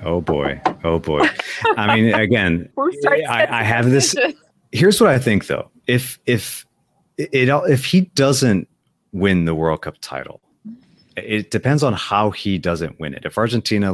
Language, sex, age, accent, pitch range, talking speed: English, male, 30-49, American, 80-110 Hz, 160 wpm